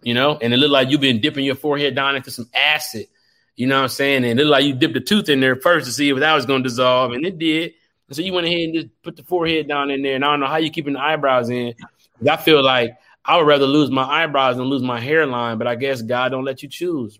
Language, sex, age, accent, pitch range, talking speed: English, male, 30-49, American, 130-165 Hz, 300 wpm